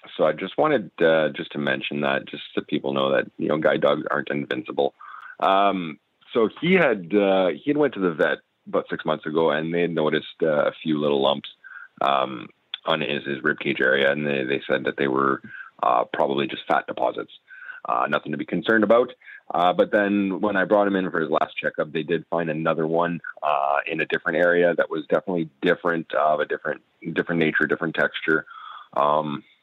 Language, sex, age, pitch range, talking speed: English, male, 30-49, 75-95 Hz, 210 wpm